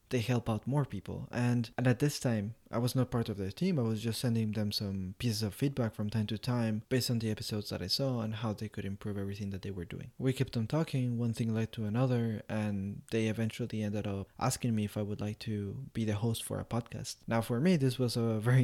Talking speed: 260 wpm